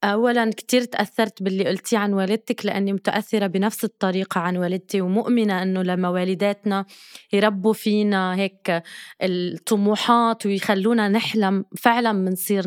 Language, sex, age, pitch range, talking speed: Arabic, female, 20-39, 195-230 Hz, 120 wpm